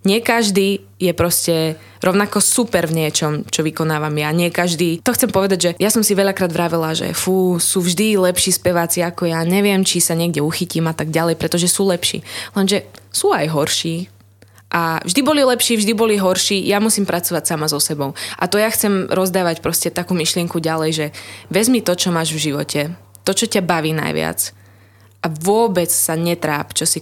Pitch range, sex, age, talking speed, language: 155-185 Hz, female, 20-39, 190 wpm, Slovak